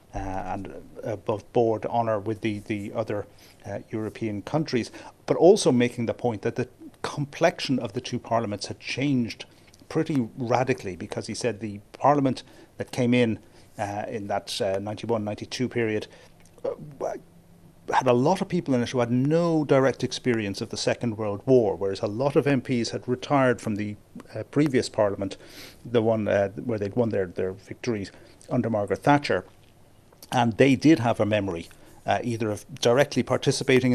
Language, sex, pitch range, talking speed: English, male, 105-125 Hz, 165 wpm